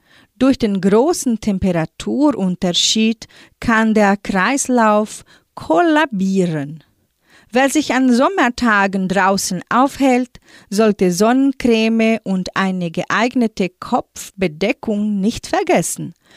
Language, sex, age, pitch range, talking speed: German, female, 40-59, 185-240 Hz, 80 wpm